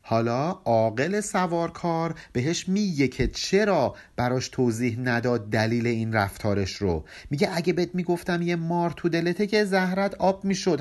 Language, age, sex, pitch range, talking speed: Persian, 50-69, male, 120-175 Hz, 145 wpm